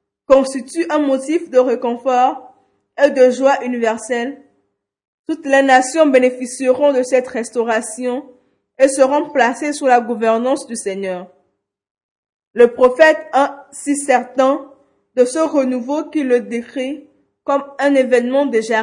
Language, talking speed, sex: French, 125 wpm, female